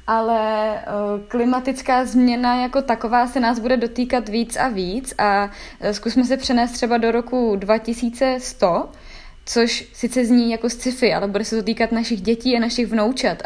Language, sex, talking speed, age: Czech, female, 150 wpm, 20-39